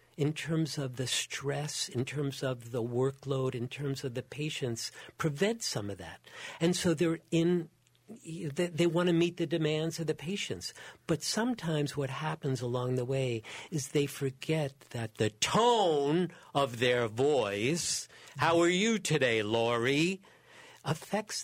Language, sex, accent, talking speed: English, male, American, 150 wpm